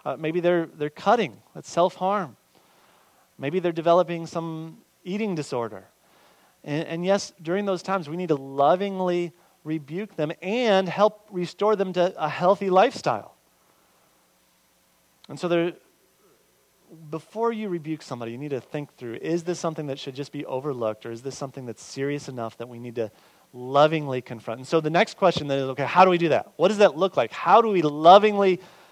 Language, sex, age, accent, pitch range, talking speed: English, male, 30-49, American, 135-175 Hz, 185 wpm